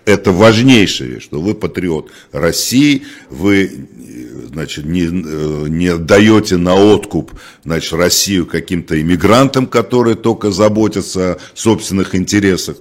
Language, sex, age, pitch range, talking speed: Russian, male, 60-79, 80-110 Hz, 110 wpm